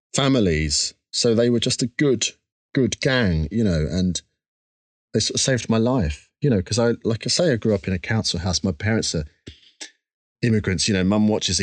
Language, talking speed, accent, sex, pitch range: English, 195 wpm, British, male, 85-125 Hz